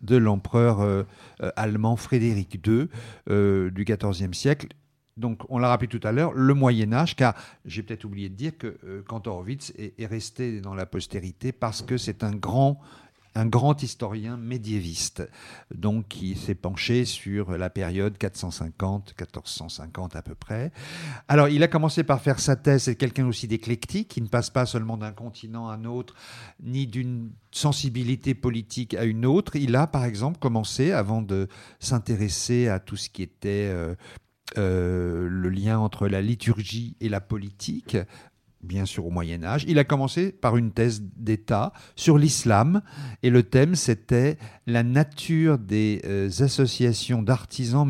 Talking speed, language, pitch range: 165 wpm, French, 105-135 Hz